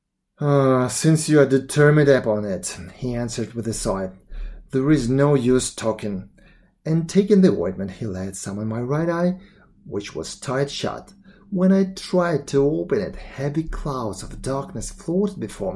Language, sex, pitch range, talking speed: English, male, 130-180 Hz, 170 wpm